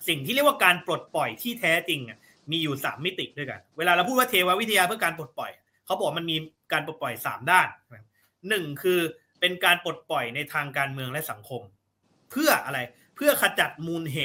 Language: Thai